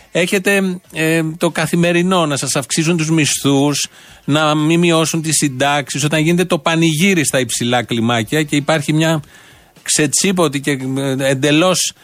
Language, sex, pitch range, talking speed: Greek, male, 140-170 Hz, 135 wpm